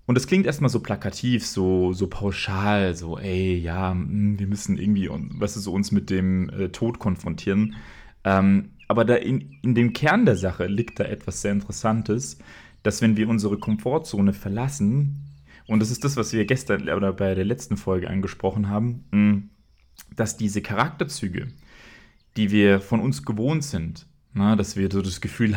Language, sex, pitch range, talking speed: German, male, 95-120 Hz, 155 wpm